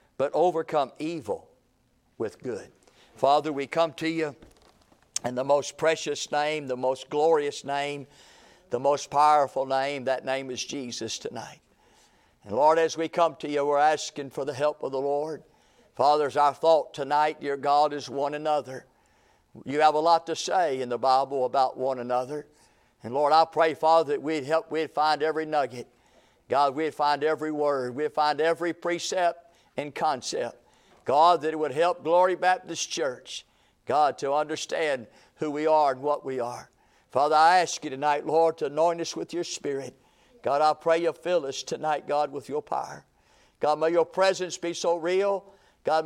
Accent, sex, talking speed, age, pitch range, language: American, male, 175 wpm, 50-69, 145-165 Hz, English